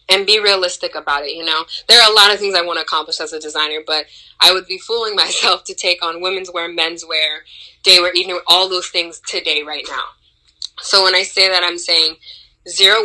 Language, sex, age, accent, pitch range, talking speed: English, female, 20-39, American, 160-190 Hz, 230 wpm